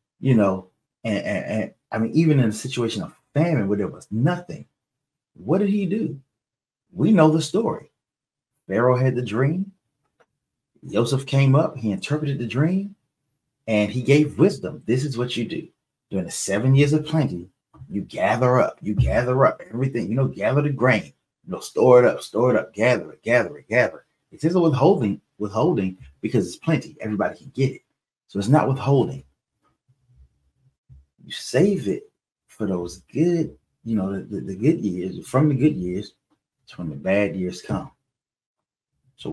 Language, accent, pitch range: English, American, 105-150 Hz